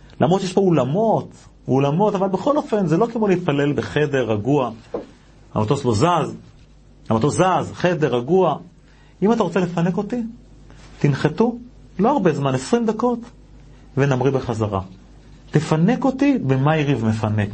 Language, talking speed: Hebrew, 135 wpm